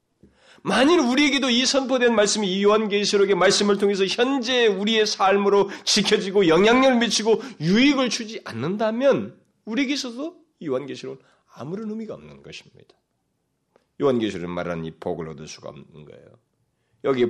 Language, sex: Korean, male